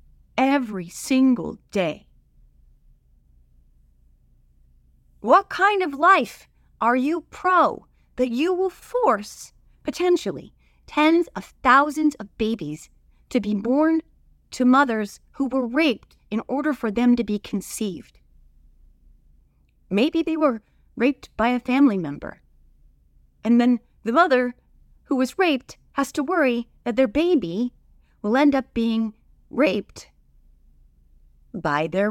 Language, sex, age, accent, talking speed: English, female, 30-49, American, 120 wpm